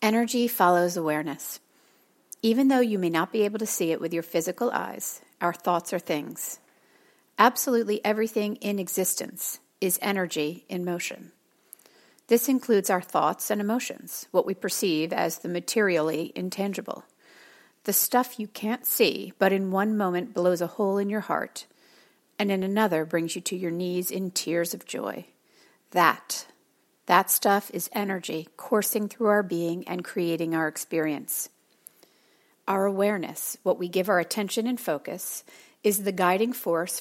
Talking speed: 155 wpm